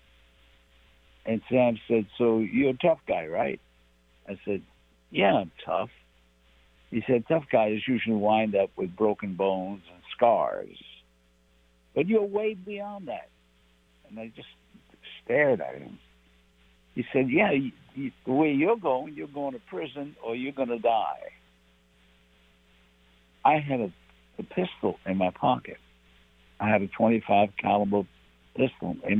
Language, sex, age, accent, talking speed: English, male, 60-79, American, 140 wpm